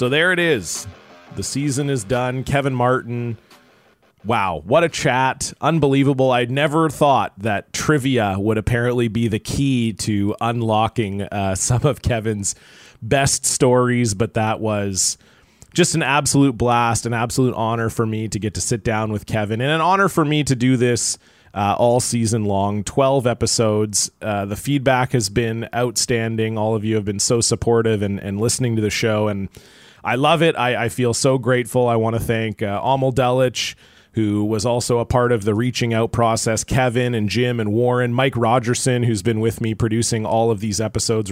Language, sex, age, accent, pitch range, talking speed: English, male, 30-49, American, 110-130 Hz, 185 wpm